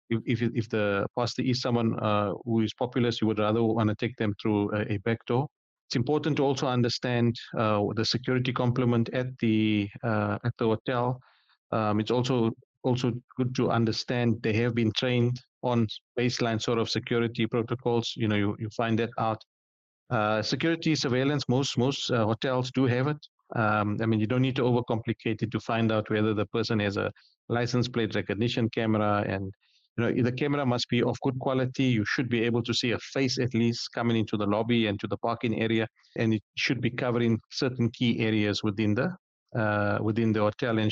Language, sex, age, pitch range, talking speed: English, male, 50-69, 110-125 Hz, 200 wpm